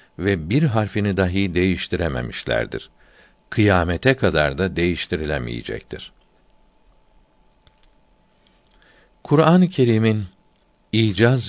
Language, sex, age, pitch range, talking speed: Turkish, male, 60-79, 85-110 Hz, 65 wpm